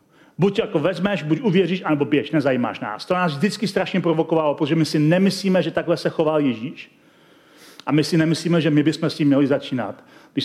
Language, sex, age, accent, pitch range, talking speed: Czech, male, 40-59, native, 150-190 Hz, 205 wpm